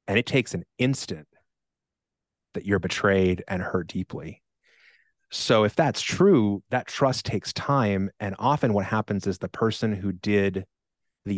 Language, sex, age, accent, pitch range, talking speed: English, male, 30-49, American, 95-120 Hz, 155 wpm